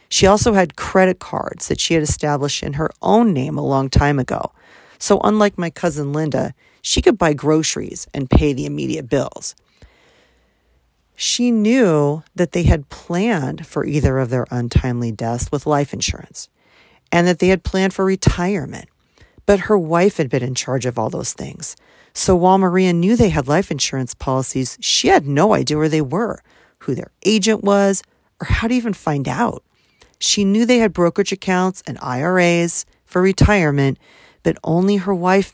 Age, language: 40-59, English